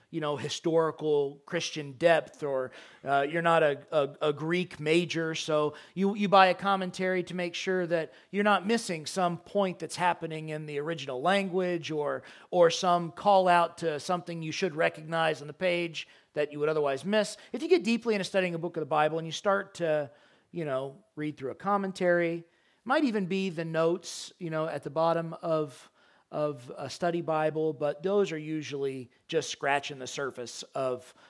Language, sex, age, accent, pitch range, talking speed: English, male, 40-59, American, 150-185 Hz, 190 wpm